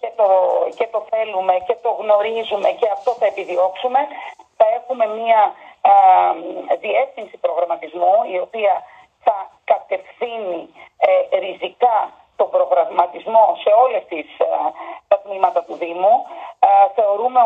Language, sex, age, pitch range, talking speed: Greek, female, 30-49, 190-255 Hz, 105 wpm